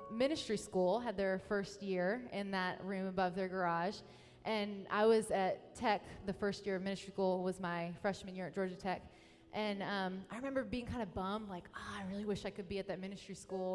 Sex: female